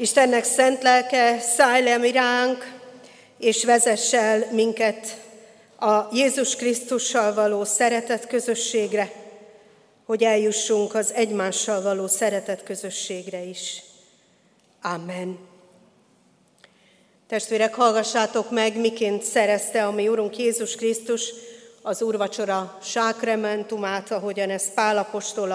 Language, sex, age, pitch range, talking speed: Hungarian, female, 40-59, 195-230 Hz, 95 wpm